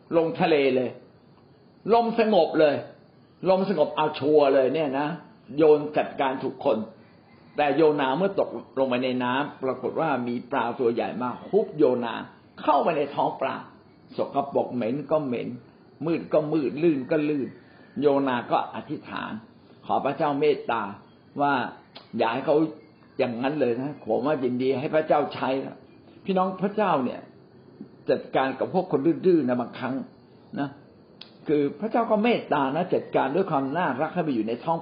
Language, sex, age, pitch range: Thai, male, 60-79, 135-185 Hz